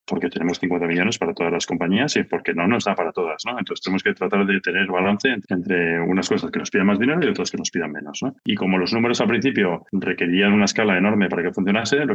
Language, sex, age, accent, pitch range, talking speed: Spanish, male, 20-39, Spanish, 90-100 Hz, 255 wpm